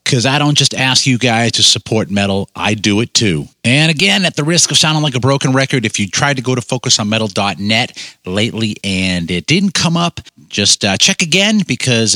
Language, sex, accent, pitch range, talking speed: English, male, American, 105-135 Hz, 210 wpm